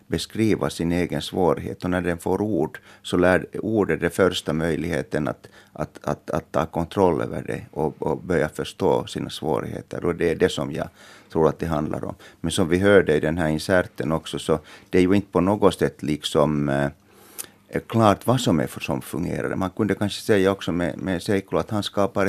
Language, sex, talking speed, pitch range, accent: Finnish, male, 200 wpm, 80-100 Hz, native